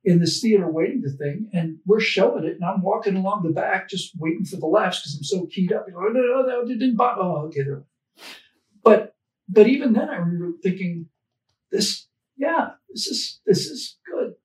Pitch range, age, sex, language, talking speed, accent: 160-210 Hz, 50-69, male, English, 200 wpm, American